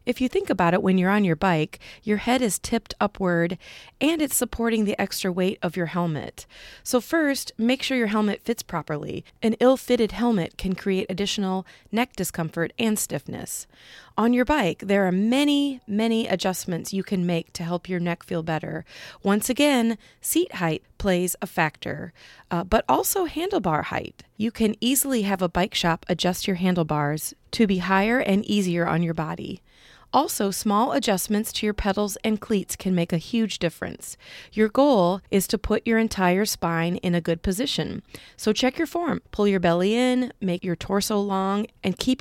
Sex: female